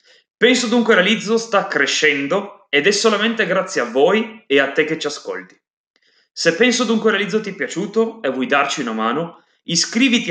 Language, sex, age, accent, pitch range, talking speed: Italian, male, 30-49, native, 155-225 Hz, 175 wpm